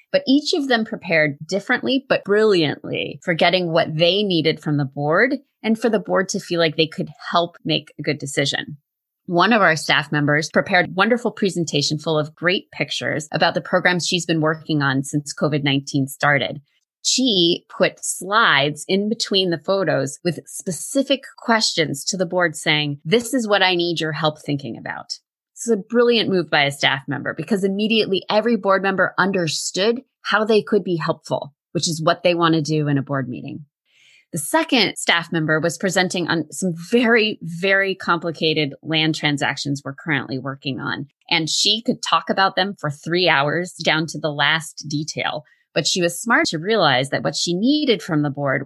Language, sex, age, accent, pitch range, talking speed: English, female, 20-39, American, 150-205 Hz, 185 wpm